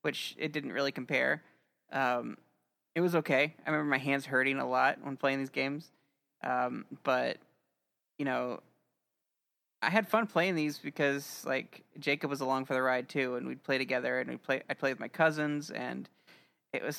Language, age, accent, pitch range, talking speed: English, 30-49, American, 130-160 Hz, 185 wpm